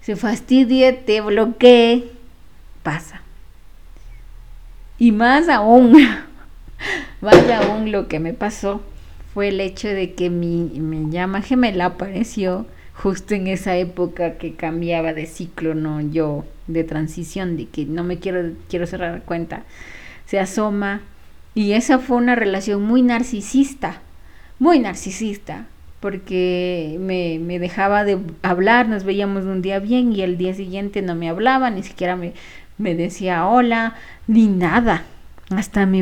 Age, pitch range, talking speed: 30-49, 175-225 Hz, 140 wpm